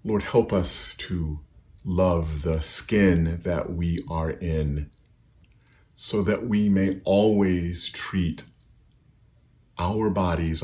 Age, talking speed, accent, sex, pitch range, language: 40-59, 105 wpm, American, male, 80-100 Hz, English